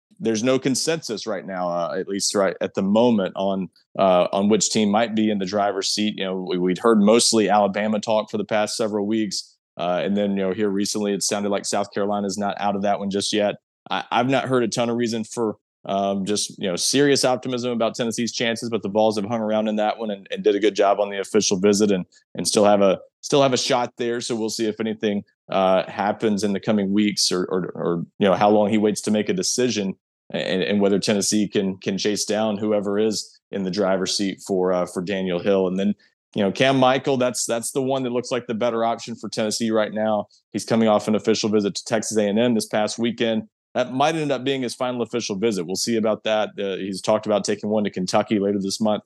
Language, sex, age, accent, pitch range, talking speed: English, male, 20-39, American, 100-115 Hz, 250 wpm